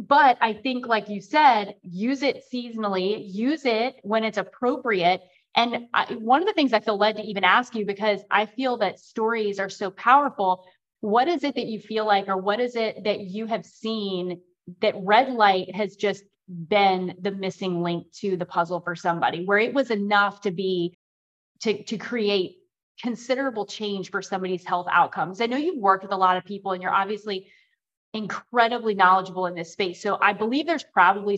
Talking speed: 190 wpm